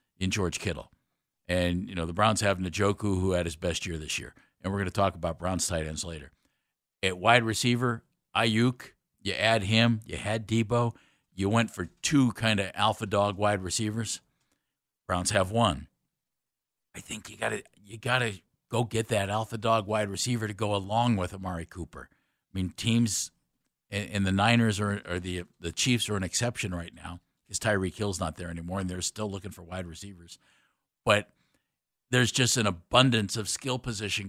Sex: male